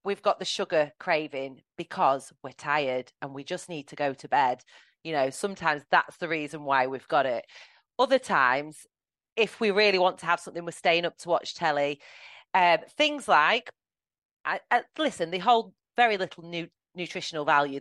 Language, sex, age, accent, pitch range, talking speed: English, female, 30-49, British, 150-190 Hz, 170 wpm